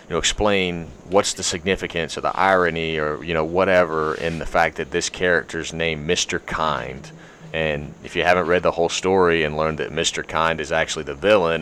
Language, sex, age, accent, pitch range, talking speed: English, male, 30-49, American, 75-85 Hz, 200 wpm